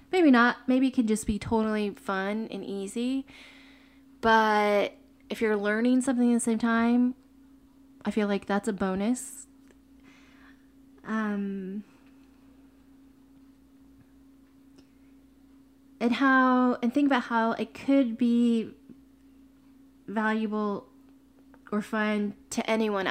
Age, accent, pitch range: 20-39, American, 220-270 Hz